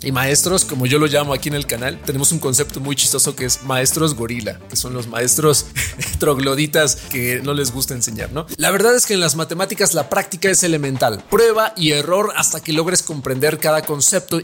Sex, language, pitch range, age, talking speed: male, Spanish, 155-210 Hz, 40-59, 210 wpm